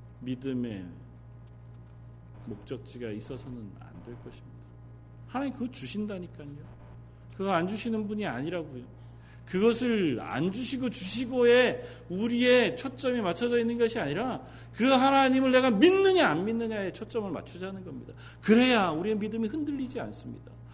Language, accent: Korean, native